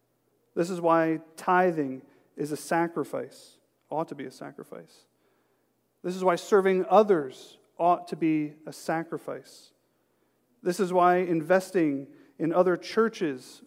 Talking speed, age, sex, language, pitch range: 125 wpm, 40-59, male, English, 155-185 Hz